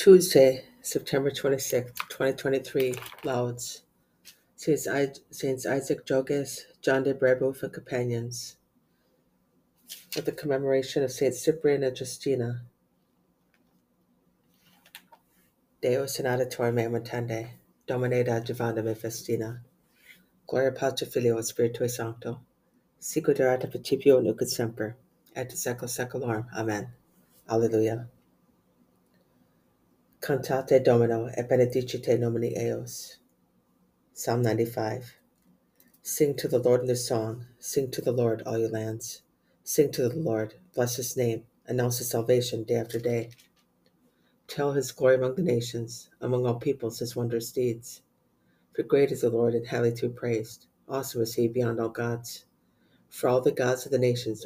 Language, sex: English, female